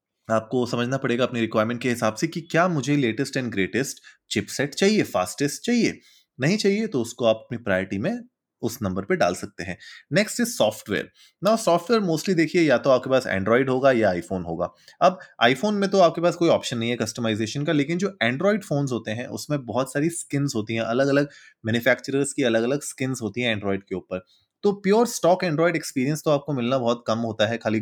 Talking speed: 185 wpm